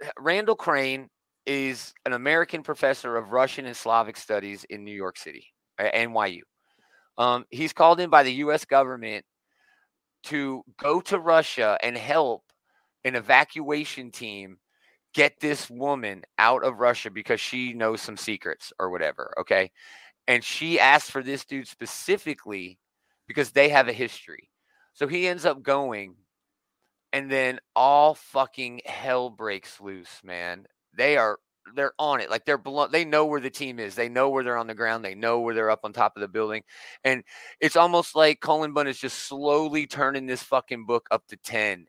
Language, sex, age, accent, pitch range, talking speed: English, male, 30-49, American, 115-150 Hz, 170 wpm